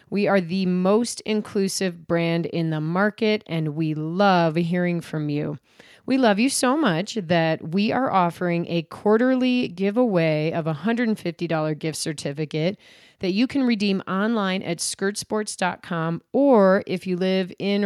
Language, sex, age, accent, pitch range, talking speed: English, female, 30-49, American, 170-225 Hz, 145 wpm